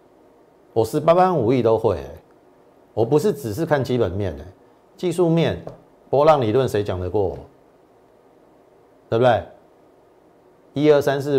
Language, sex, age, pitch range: Chinese, male, 50-69, 100-150 Hz